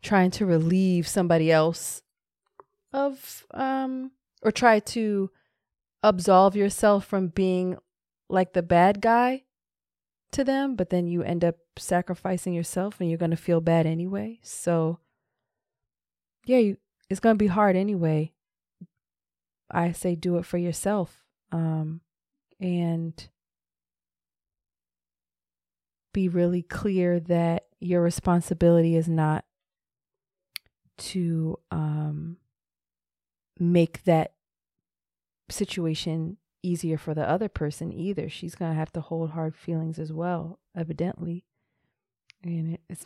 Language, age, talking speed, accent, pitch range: English, 30-49, 115 wpm, American, 155-190 Hz